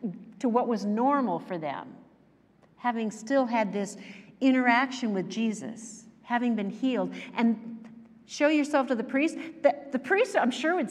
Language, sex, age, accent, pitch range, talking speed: English, female, 50-69, American, 210-280 Hz, 155 wpm